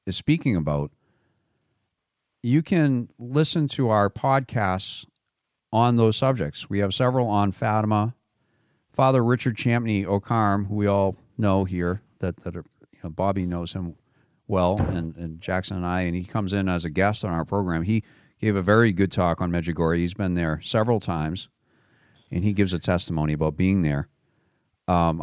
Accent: American